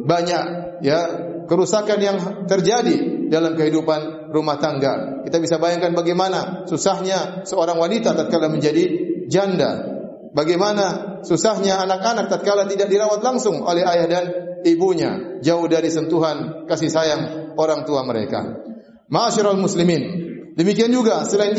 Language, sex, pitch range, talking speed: Indonesian, male, 165-215 Hz, 120 wpm